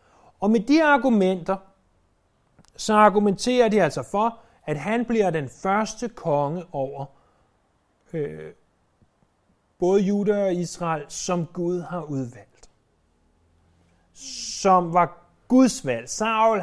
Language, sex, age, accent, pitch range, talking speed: Danish, male, 30-49, native, 150-205 Hz, 110 wpm